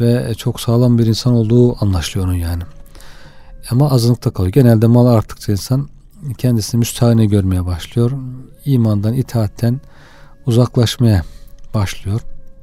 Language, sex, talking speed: Turkish, male, 115 wpm